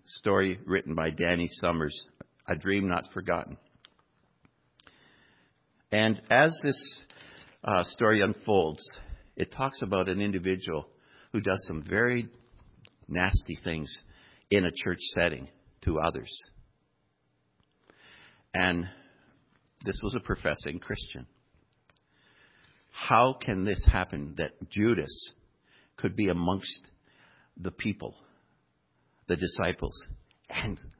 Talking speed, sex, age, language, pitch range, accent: 100 wpm, male, 60-79, English, 80-95 Hz, American